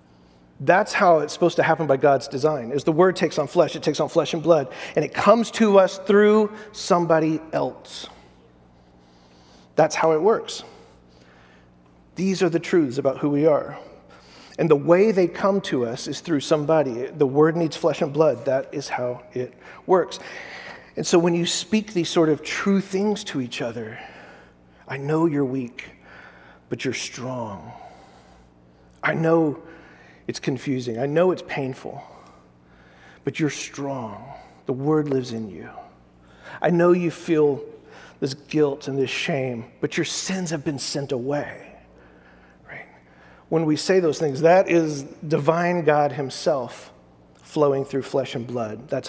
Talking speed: 160 wpm